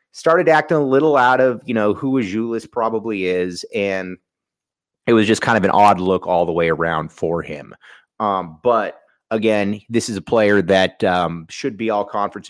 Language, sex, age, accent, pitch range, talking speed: English, male, 30-49, American, 100-130 Hz, 185 wpm